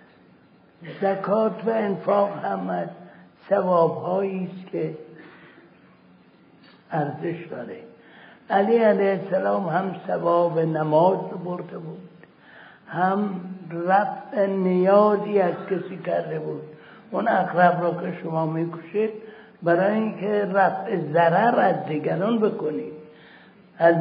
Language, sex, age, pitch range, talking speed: Persian, male, 60-79, 165-205 Hz, 100 wpm